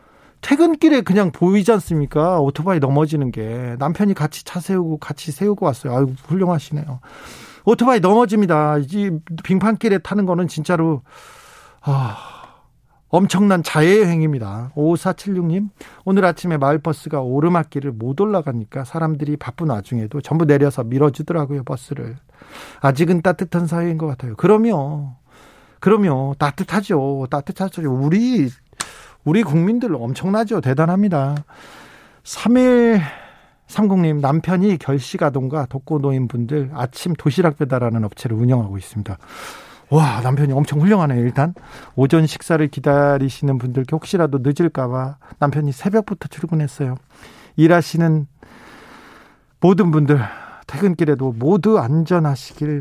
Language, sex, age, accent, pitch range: Korean, male, 40-59, native, 135-180 Hz